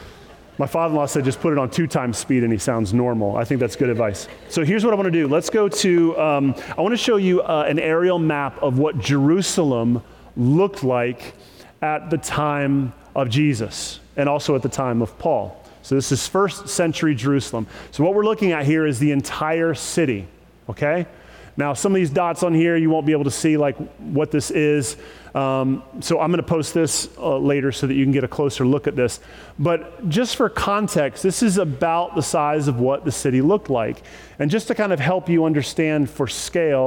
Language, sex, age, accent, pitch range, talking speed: English, male, 30-49, American, 130-165 Hz, 215 wpm